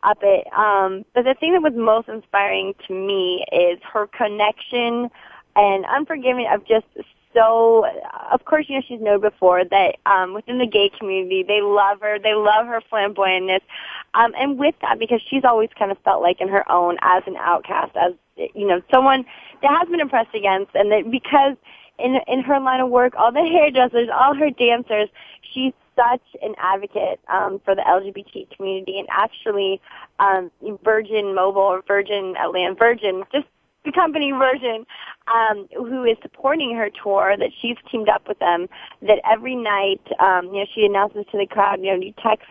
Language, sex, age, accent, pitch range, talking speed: English, female, 20-39, American, 190-240 Hz, 180 wpm